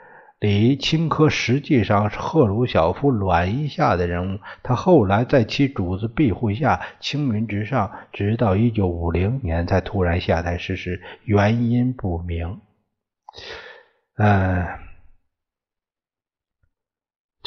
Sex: male